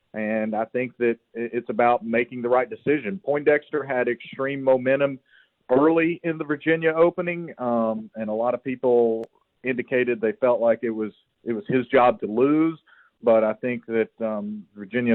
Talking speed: 170 wpm